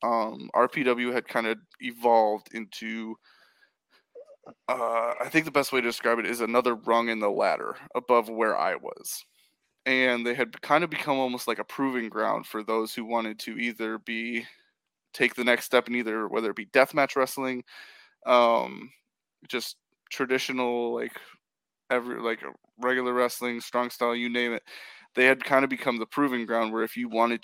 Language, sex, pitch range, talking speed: English, male, 115-125 Hz, 175 wpm